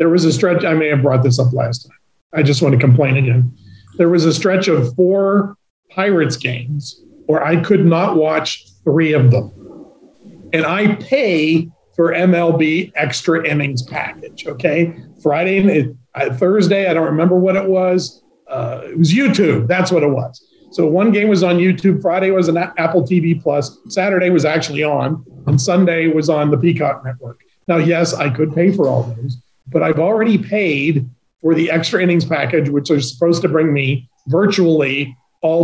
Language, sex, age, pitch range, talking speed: English, male, 40-59, 145-175 Hz, 180 wpm